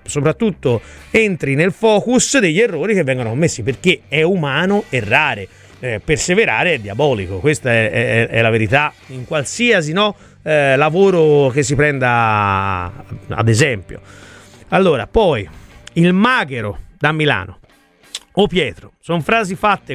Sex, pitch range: male, 120-180 Hz